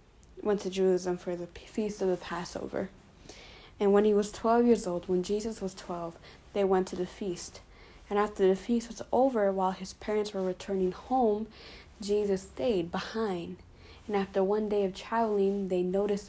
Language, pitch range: English, 185-220 Hz